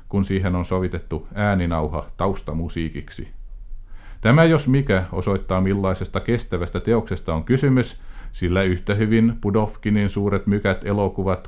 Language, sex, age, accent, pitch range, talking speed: Finnish, male, 50-69, native, 90-115 Hz, 115 wpm